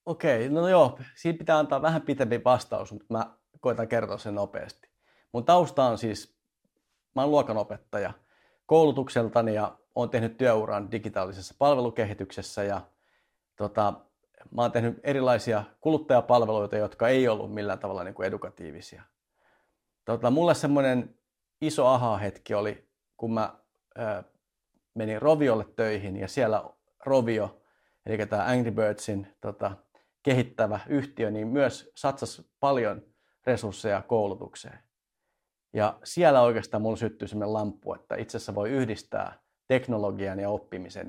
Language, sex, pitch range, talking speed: Finnish, male, 105-130 Hz, 125 wpm